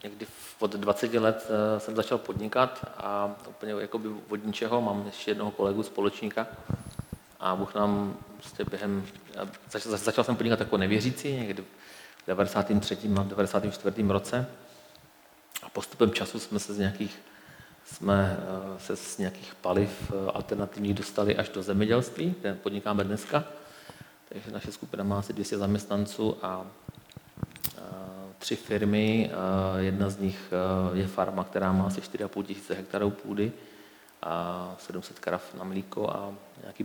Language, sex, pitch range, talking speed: Czech, male, 100-105 Hz, 135 wpm